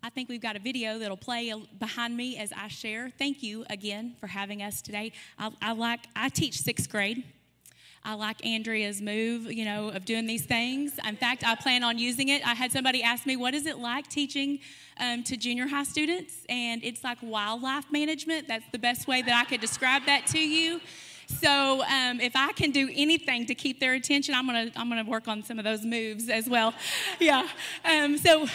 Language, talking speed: English, 220 wpm